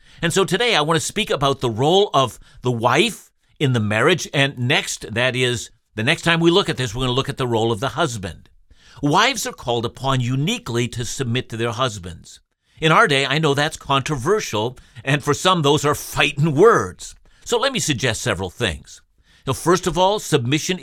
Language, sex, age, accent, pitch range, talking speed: English, male, 50-69, American, 125-170 Hz, 205 wpm